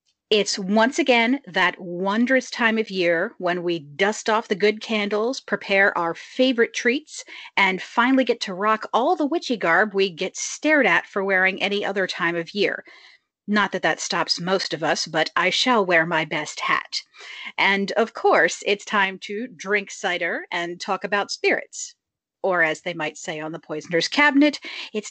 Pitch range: 175-235 Hz